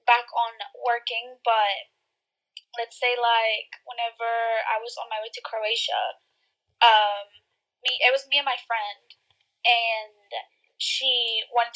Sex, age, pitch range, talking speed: female, 10-29, 230-290 Hz, 135 wpm